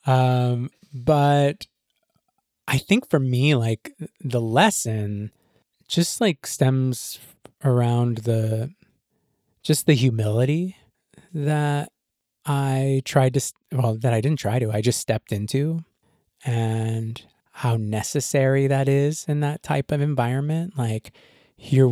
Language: English